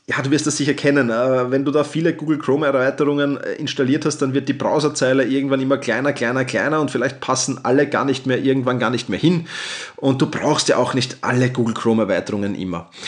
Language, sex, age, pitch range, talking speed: German, male, 30-49, 120-145 Hz, 215 wpm